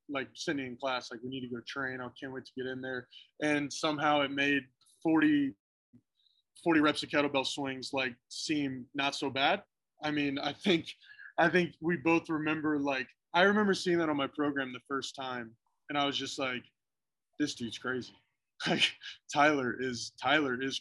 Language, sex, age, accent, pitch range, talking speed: English, male, 20-39, American, 125-145 Hz, 185 wpm